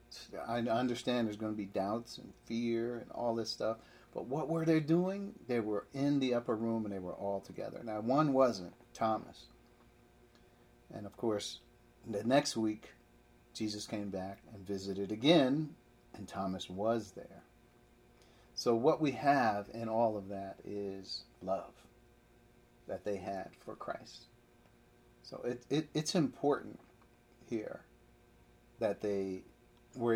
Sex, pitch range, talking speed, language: male, 100-125 Hz, 140 wpm, English